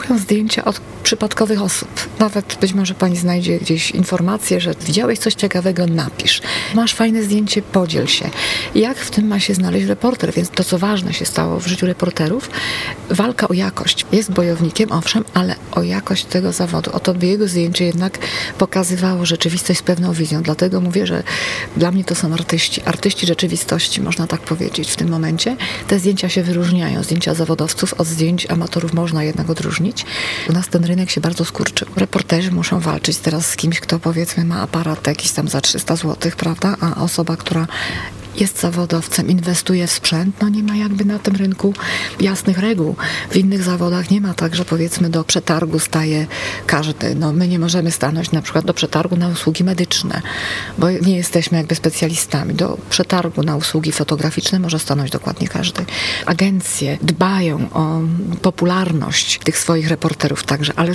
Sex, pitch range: female, 165-190 Hz